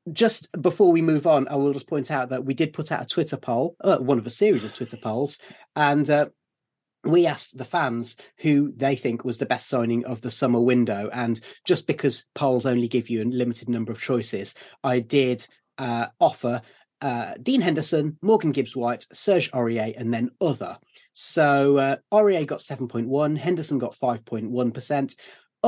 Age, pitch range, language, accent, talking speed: 30-49, 125-165 Hz, English, British, 180 wpm